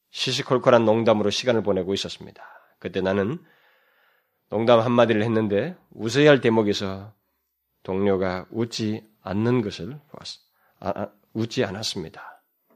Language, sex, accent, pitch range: Korean, male, native, 95-120 Hz